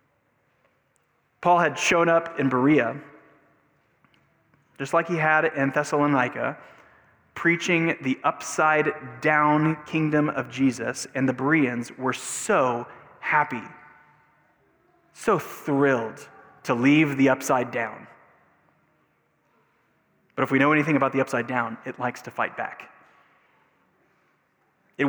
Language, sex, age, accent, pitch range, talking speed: English, male, 20-39, American, 130-155 Hz, 110 wpm